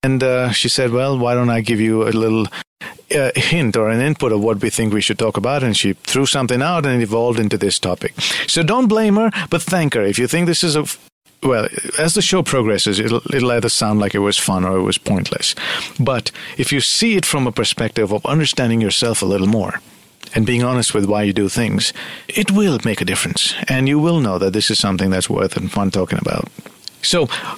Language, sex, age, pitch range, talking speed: English, male, 50-69, 110-155 Hz, 235 wpm